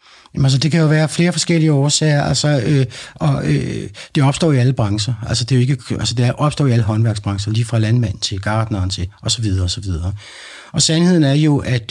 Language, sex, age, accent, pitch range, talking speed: Danish, male, 60-79, native, 110-140 Hz, 230 wpm